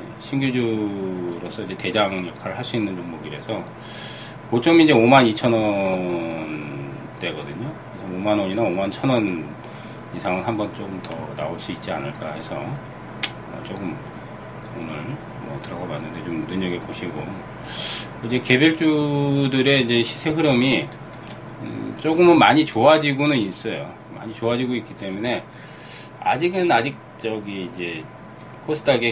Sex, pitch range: male, 100-135 Hz